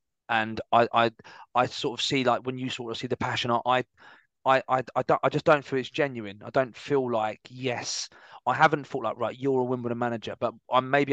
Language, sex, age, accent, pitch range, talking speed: English, male, 20-39, British, 110-130 Hz, 230 wpm